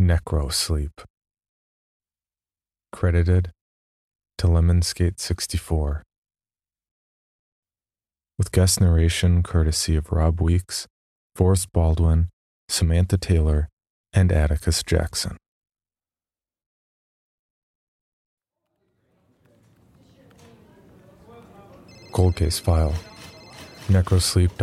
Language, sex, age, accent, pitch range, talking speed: English, male, 30-49, American, 80-95 Hz, 55 wpm